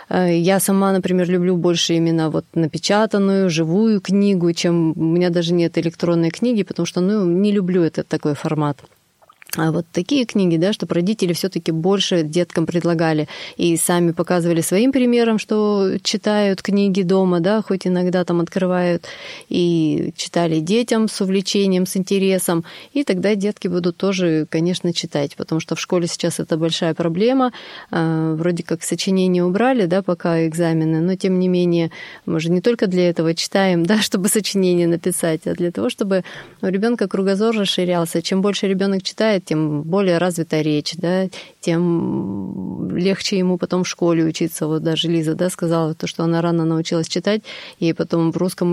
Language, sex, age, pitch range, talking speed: Russian, female, 30-49, 165-195 Hz, 165 wpm